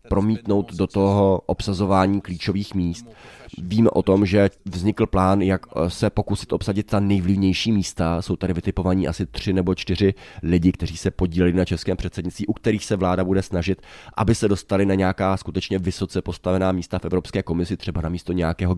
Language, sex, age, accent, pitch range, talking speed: Czech, male, 20-39, native, 90-100 Hz, 175 wpm